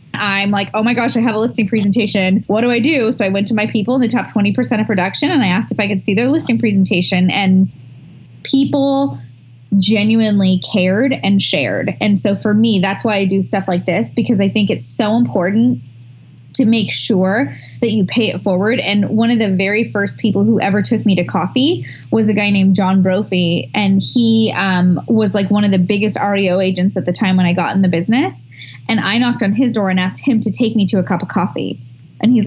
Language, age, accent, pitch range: English, 10-29, American, 190-235 Hz